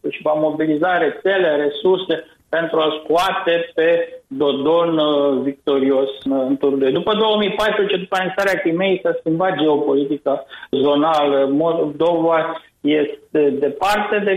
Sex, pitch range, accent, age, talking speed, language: male, 155-190 Hz, native, 50-69, 115 wpm, Romanian